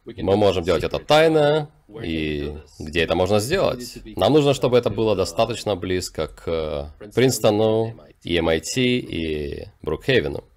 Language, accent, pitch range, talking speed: Russian, native, 80-125 Hz, 125 wpm